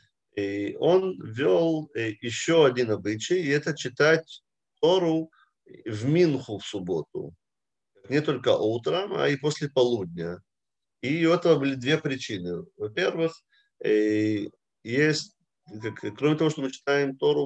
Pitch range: 120-165 Hz